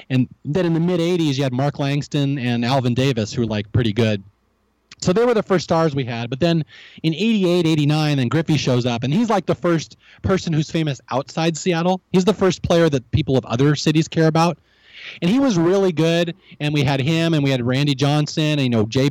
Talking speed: 230 wpm